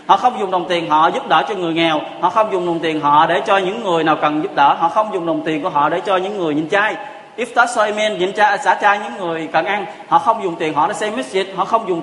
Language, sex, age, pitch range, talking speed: Vietnamese, male, 20-39, 160-205 Hz, 310 wpm